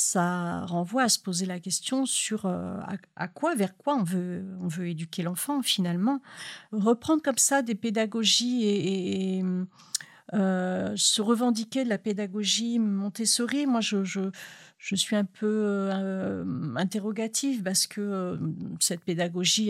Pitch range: 180-215 Hz